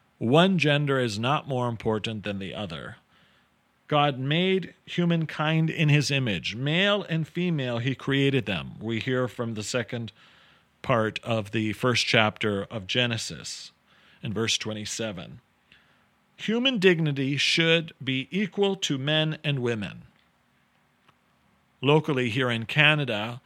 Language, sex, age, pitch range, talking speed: English, male, 40-59, 120-155 Hz, 125 wpm